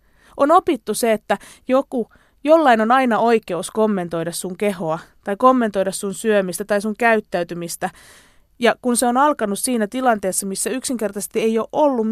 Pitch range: 190-260 Hz